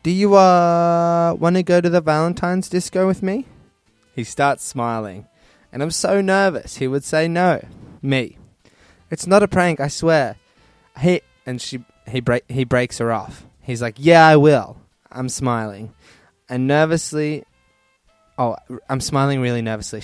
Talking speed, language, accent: 160 wpm, English, Australian